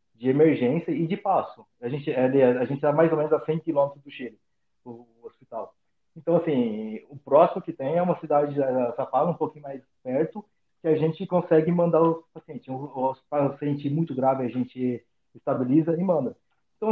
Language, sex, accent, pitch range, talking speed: Portuguese, male, Brazilian, 135-170 Hz, 190 wpm